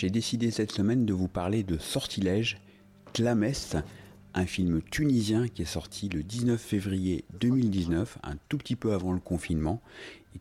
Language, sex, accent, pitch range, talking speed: French, male, French, 85-110 Hz, 160 wpm